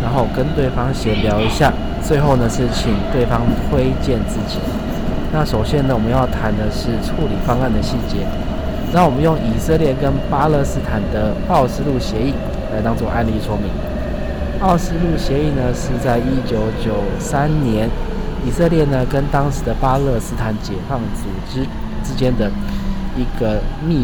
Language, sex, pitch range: Chinese, male, 105-135 Hz